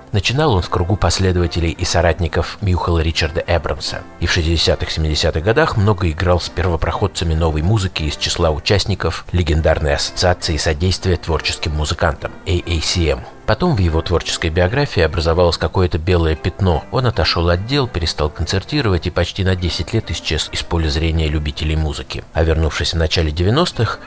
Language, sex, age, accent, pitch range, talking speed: Russian, male, 50-69, native, 80-95 Hz, 150 wpm